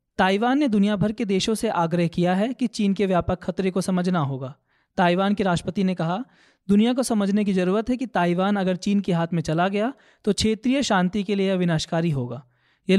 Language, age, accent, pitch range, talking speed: Hindi, 20-39, native, 175-220 Hz, 210 wpm